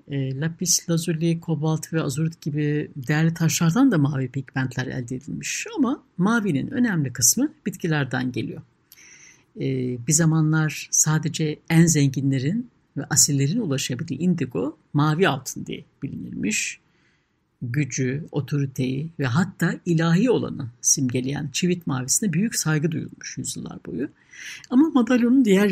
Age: 60-79